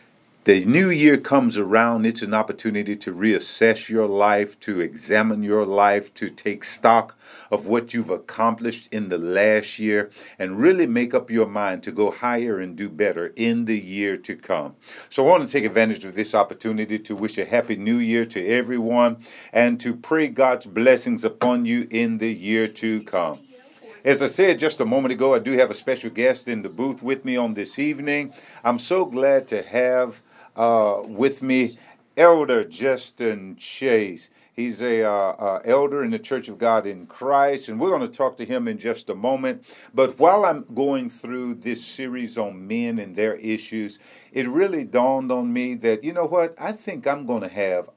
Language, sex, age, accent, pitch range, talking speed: English, male, 50-69, American, 110-135 Hz, 190 wpm